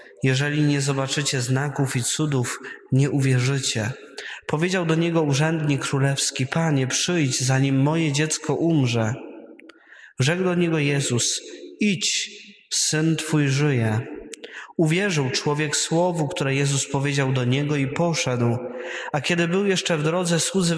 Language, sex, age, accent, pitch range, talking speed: Polish, male, 20-39, native, 130-160 Hz, 125 wpm